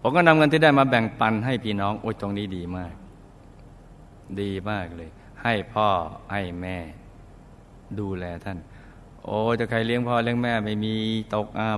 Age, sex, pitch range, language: 60-79, male, 95-115 Hz, Thai